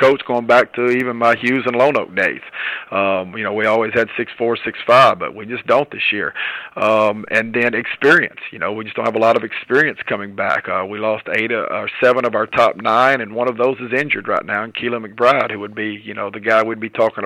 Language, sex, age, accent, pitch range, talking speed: English, male, 40-59, American, 110-125 Hz, 255 wpm